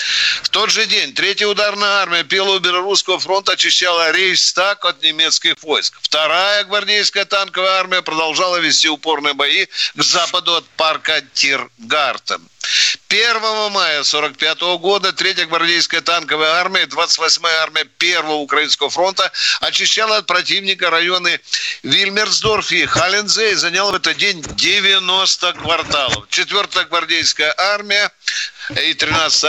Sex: male